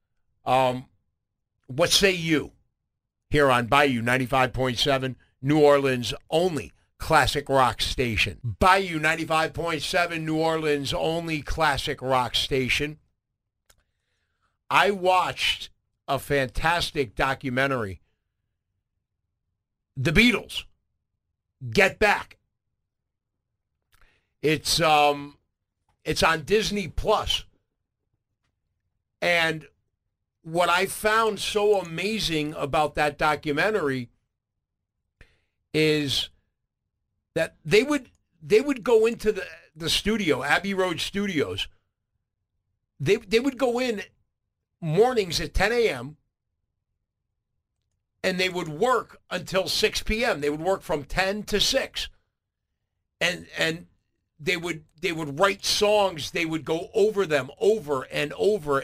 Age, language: 50-69, English